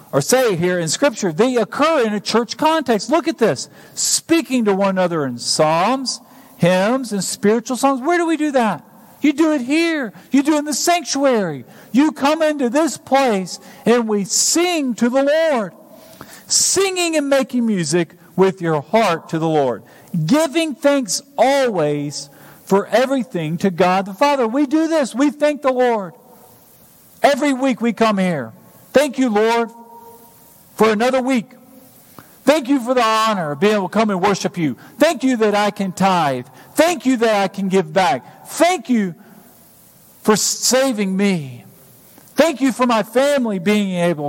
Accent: American